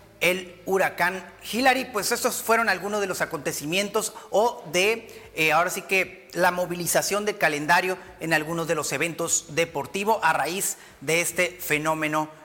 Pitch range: 165-210 Hz